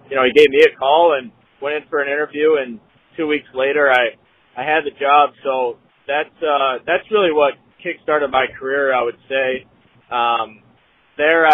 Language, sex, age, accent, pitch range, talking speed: English, male, 30-49, American, 125-150 Hz, 185 wpm